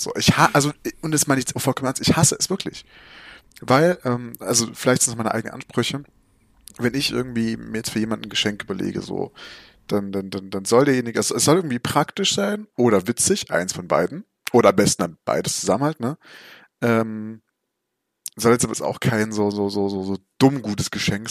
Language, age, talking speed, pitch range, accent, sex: German, 30-49, 205 wpm, 100-125 Hz, German, male